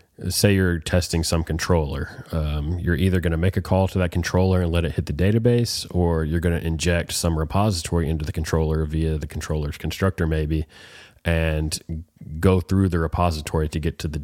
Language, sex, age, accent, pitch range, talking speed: English, male, 30-49, American, 80-90 Hz, 195 wpm